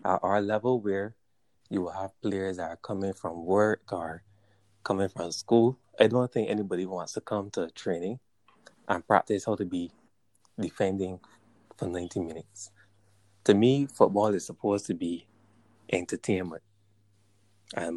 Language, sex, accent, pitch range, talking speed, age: English, male, American, 95-110 Hz, 145 wpm, 20-39